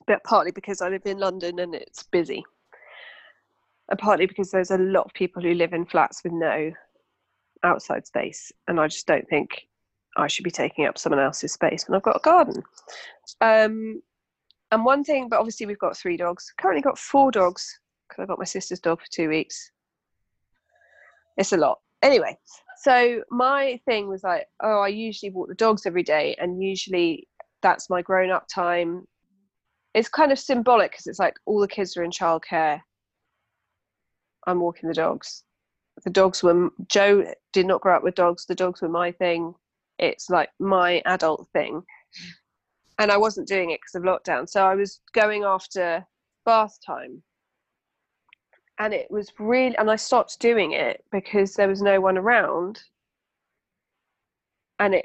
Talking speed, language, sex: 175 wpm, English, female